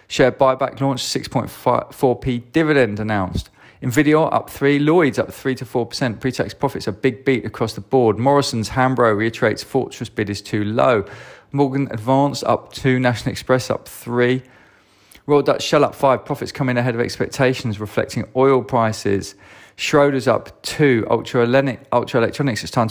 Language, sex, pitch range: English, male, 115-140 Hz